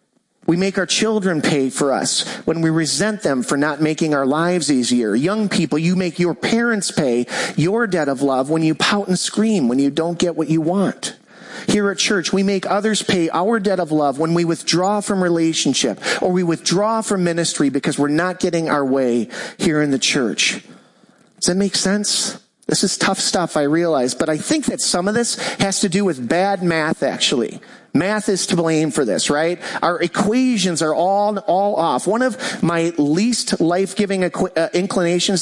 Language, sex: English, male